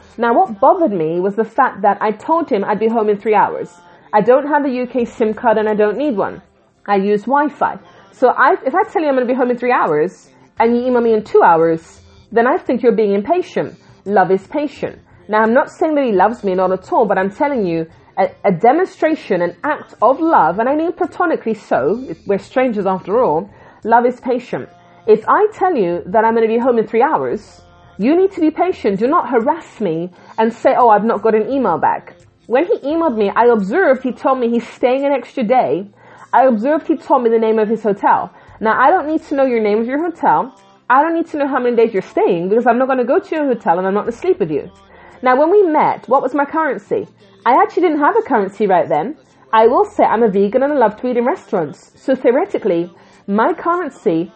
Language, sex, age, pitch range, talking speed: English, female, 30-49, 215-300 Hz, 245 wpm